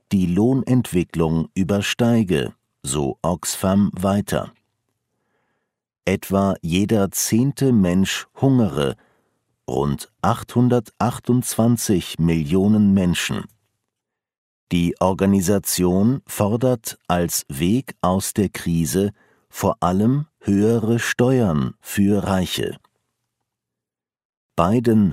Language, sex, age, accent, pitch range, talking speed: German, male, 50-69, German, 90-115 Hz, 70 wpm